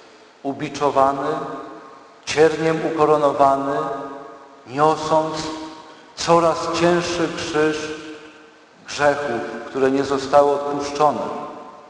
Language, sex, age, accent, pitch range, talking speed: Polish, male, 50-69, native, 140-180 Hz, 60 wpm